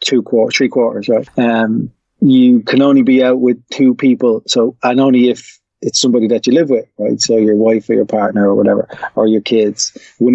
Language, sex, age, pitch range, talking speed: English, male, 30-49, 115-135 Hz, 215 wpm